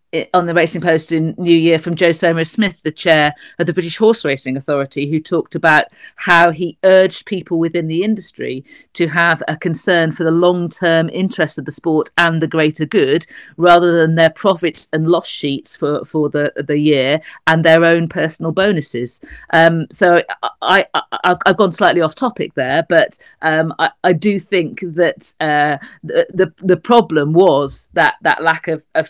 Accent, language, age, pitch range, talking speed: British, English, 40-59, 155-185 Hz, 185 wpm